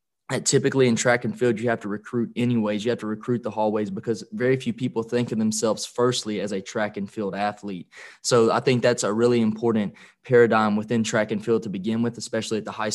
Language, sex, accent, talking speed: English, male, American, 225 wpm